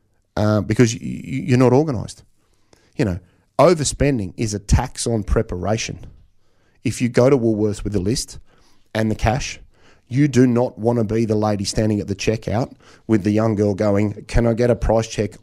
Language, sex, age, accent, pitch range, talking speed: English, male, 30-49, Australian, 100-120 Hz, 185 wpm